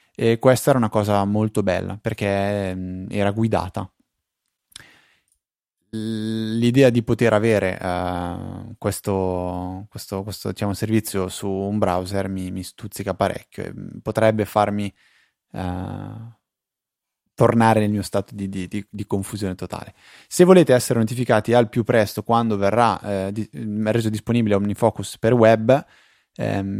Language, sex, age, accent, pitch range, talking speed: Italian, male, 20-39, native, 95-115 Hz, 110 wpm